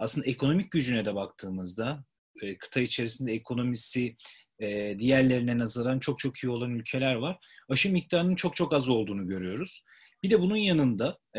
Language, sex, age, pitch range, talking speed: Turkish, male, 40-59, 120-160 Hz, 140 wpm